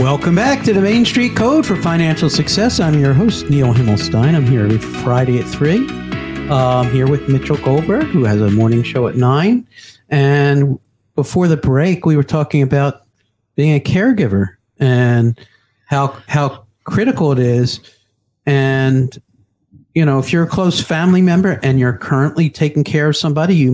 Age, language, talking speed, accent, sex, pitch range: 50-69, English, 170 wpm, American, male, 125-165 Hz